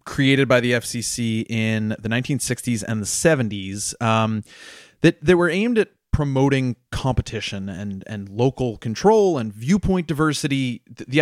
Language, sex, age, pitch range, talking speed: English, male, 30-49, 110-135 Hz, 140 wpm